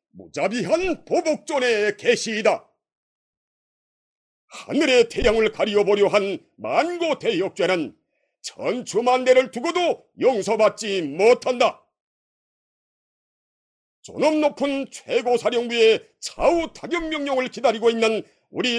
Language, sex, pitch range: Korean, male, 225-320 Hz